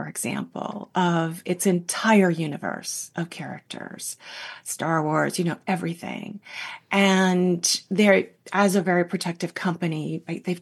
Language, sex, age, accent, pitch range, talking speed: English, female, 40-59, American, 175-220 Hz, 115 wpm